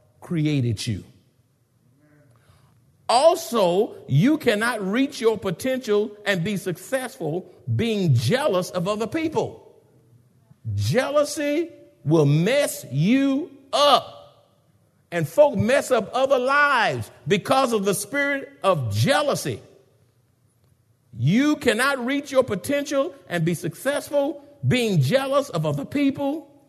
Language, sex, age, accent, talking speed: English, male, 50-69, American, 105 wpm